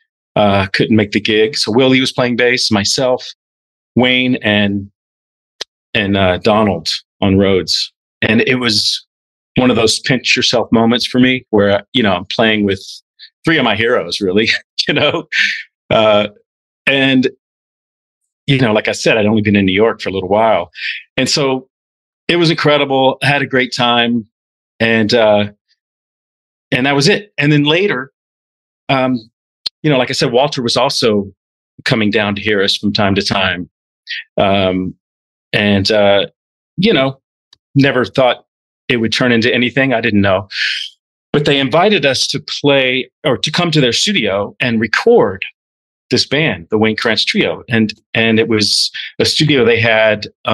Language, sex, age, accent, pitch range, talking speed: English, male, 40-59, American, 100-130 Hz, 165 wpm